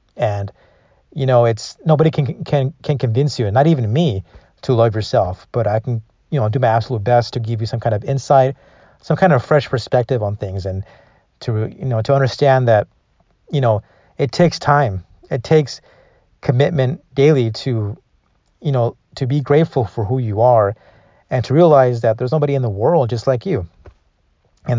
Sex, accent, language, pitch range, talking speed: male, American, English, 110-140 Hz, 190 wpm